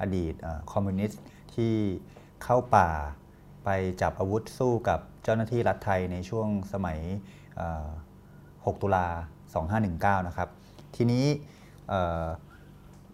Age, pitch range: 20-39, 90-110 Hz